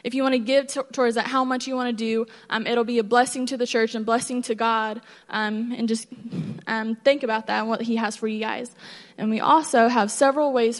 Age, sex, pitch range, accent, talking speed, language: 20-39, female, 220-240 Hz, American, 255 wpm, English